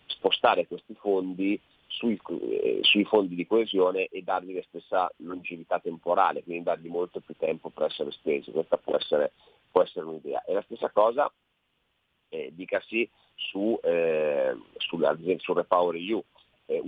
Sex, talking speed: male, 155 wpm